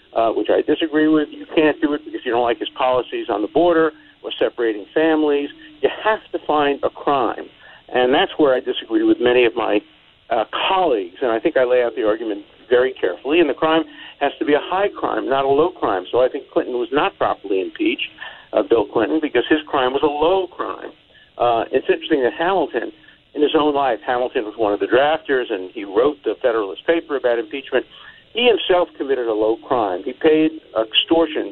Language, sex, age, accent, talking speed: English, male, 50-69, American, 210 wpm